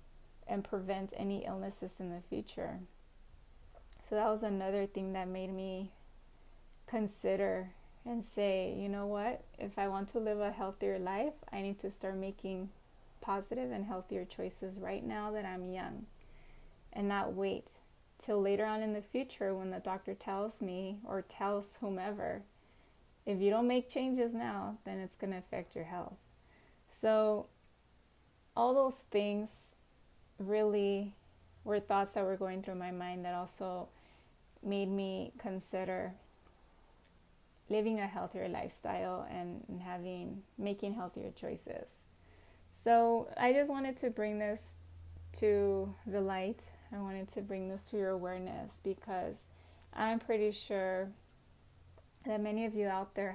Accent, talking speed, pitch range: American, 145 wpm, 190-215 Hz